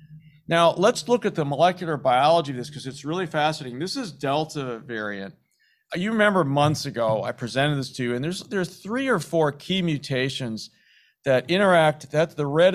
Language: English